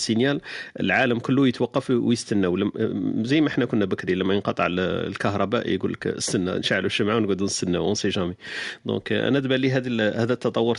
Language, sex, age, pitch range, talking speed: Arabic, male, 40-59, 110-135 Hz, 145 wpm